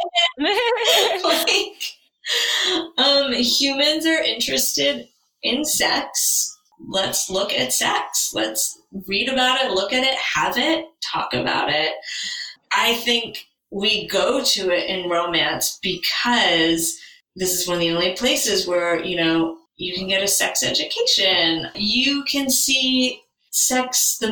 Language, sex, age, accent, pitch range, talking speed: English, female, 20-39, American, 175-255 Hz, 130 wpm